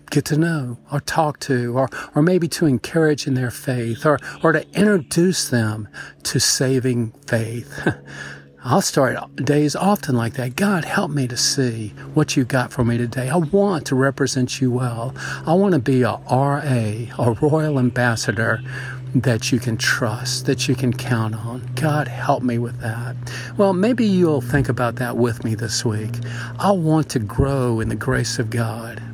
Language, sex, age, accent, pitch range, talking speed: English, male, 50-69, American, 120-150 Hz, 180 wpm